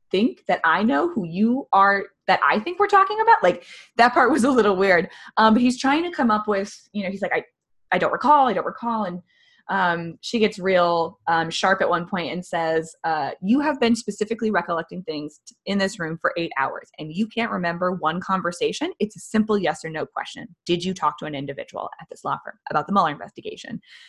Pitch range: 170-235 Hz